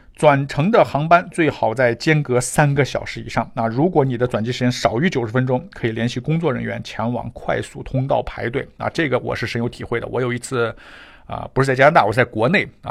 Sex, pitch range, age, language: male, 110-135 Hz, 50-69, Chinese